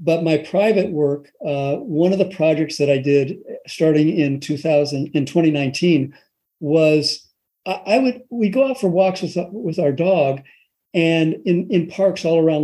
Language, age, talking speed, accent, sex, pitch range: English, 50-69, 175 wpm, American, male, 150-190 Hz